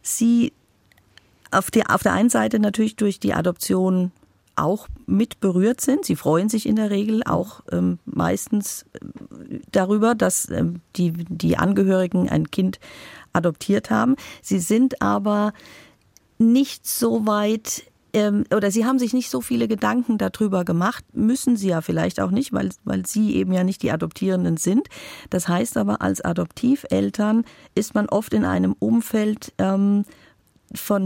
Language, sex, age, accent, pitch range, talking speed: German, female, 50-69, German, 180-230 Hz, 150 wpm